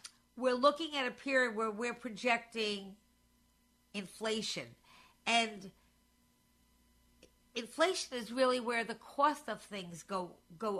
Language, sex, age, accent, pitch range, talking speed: English, female, 50-69, American, 205-245 Hz, 110 wpm